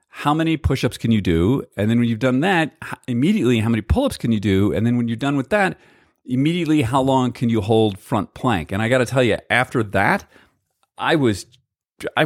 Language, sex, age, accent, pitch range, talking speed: English, male, 40-59, American, 100-135 Hz, 220 wpm